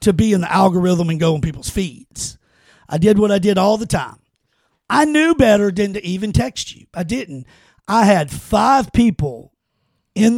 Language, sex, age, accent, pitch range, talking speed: English, male, 50-69, American, 160-235 Hz, 190 wpm